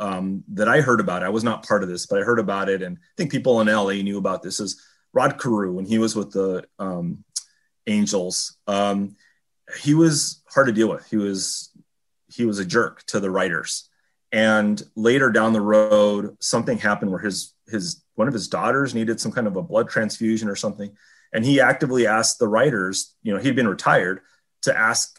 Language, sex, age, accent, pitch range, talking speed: English, male, 30-49, American, 105-155 Hz, 205 wpm